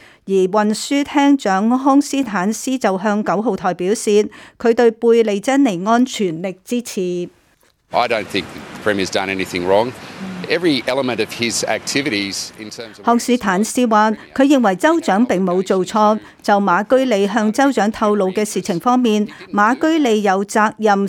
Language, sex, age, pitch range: Chinese, female, 50-69, 190-235 Hz